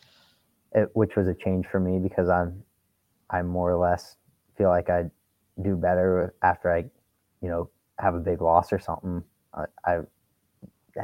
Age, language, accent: 20-39, English, American